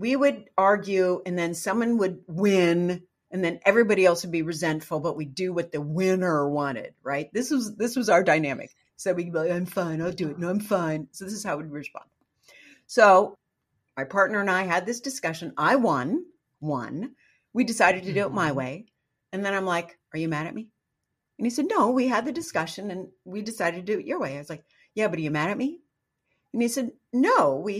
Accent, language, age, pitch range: American, English, 50-69, 160-220 Hz